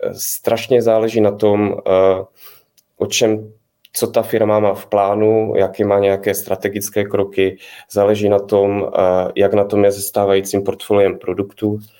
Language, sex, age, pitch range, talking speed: Czech, male, 20-39, 95-110 Hz, 135 wpm